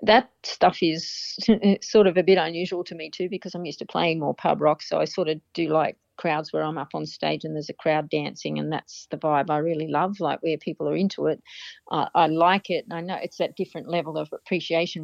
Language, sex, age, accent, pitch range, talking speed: English, female, 40-59, Australian, 155-185 Hz, 245 wpm